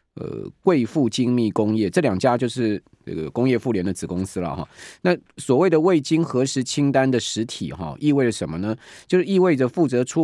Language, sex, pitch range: Chinese, male, 105-140 Hz